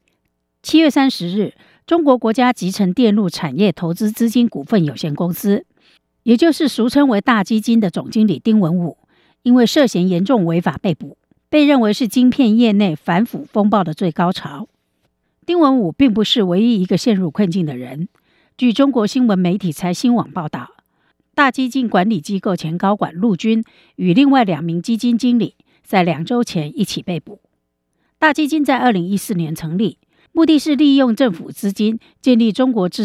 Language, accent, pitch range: Chinese, American, 175-250 Hz